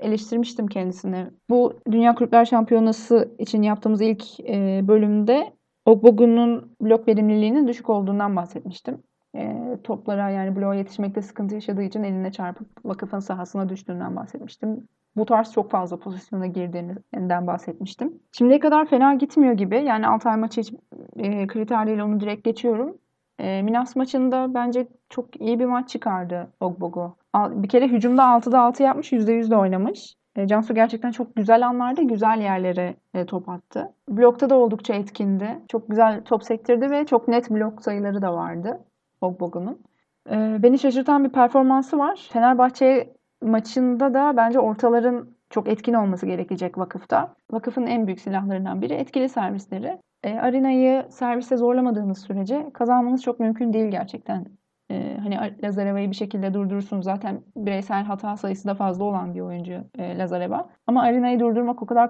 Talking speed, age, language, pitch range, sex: 145 wpm, 30-49, Turkish, 200-245 Hz, female